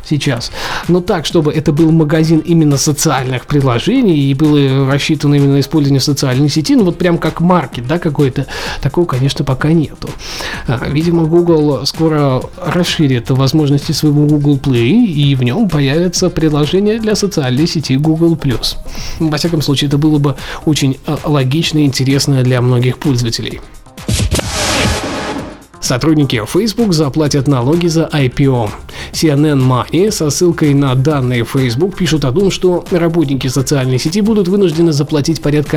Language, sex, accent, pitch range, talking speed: Russian, male, native, 140-170 Hz, 140 wpm